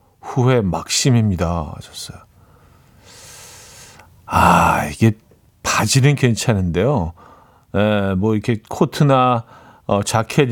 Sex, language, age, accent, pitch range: male, Korean, 40-59, native, 100-140 Hz